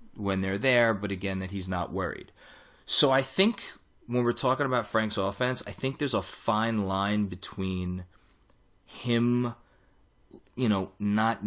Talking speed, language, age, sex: 150 wpm, English, 20-39, male